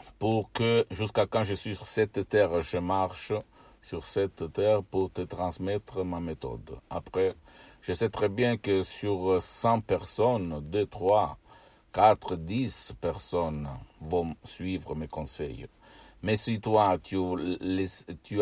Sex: male